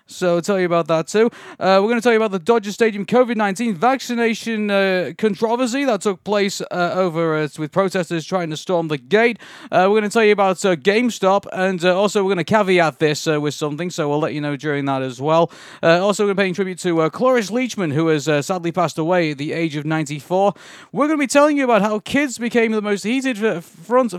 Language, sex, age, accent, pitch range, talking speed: English, male, 30-49, British, 175-235 Hz, 240 wpm